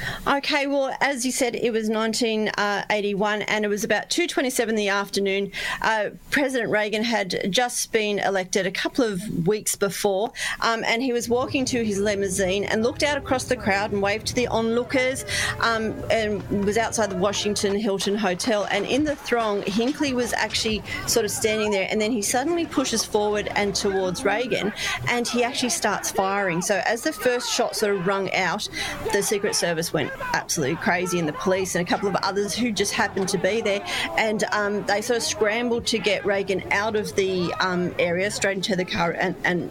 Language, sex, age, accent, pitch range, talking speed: English, female, 40-59, Australian, 195-230 Hz, 195 wpm